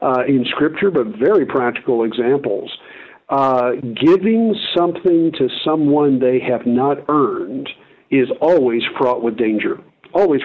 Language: English